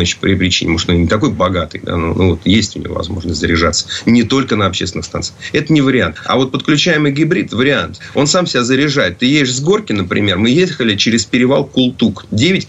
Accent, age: native, 30-49